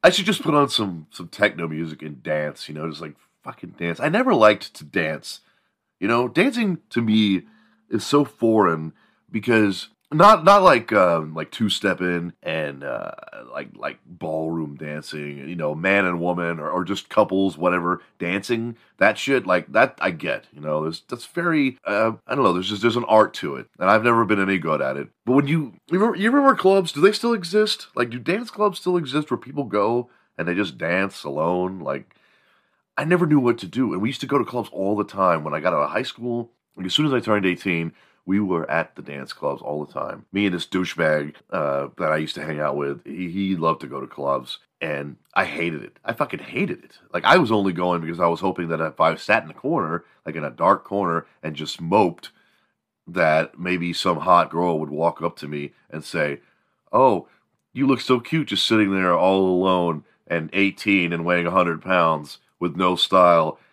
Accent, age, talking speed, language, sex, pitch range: American, 30-49, 220 wpm, English, male, 85-120 Hz